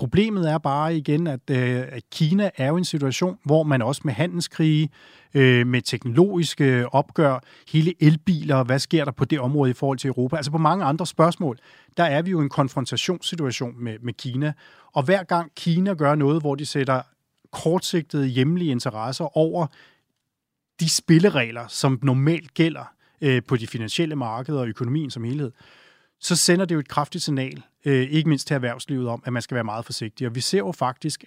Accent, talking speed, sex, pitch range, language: native, 180 wpm, male, 125-160 Hz, Danish